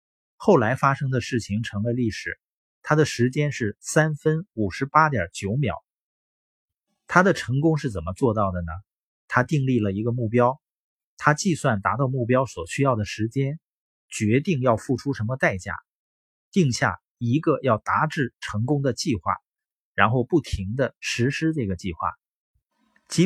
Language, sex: Chinese, male